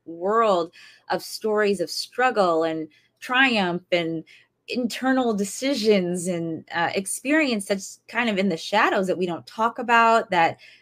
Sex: female